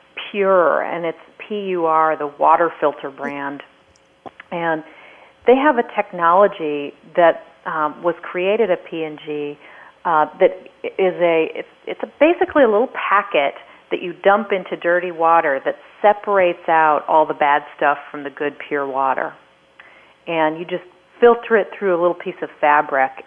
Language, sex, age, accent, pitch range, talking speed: English, female, 40-59, American, 160-210 Hz, 150 wpm